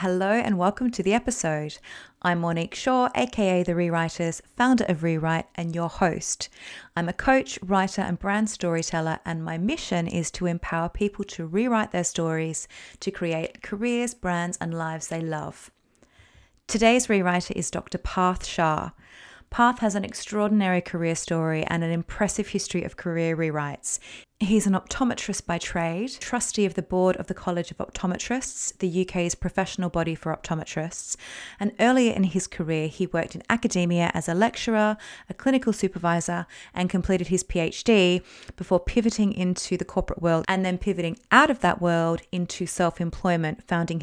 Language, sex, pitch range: English, female, 170-205 Hz